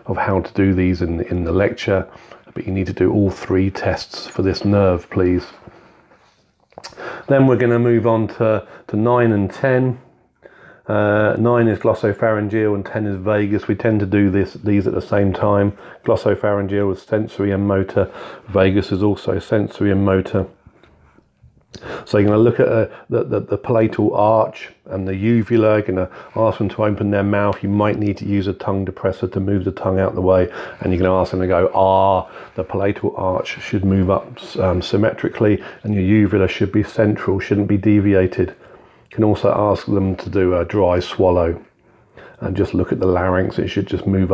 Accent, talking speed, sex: British, 200 wpm, male